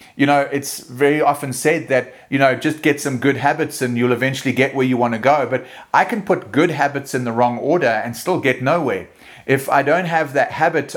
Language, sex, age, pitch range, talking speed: English, male, 30-49, 125-150 Hz, 235 wpm